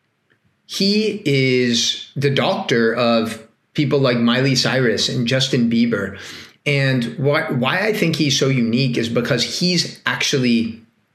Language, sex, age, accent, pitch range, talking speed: English, male, 30-49, American, 120-160 Hz, 130 wpm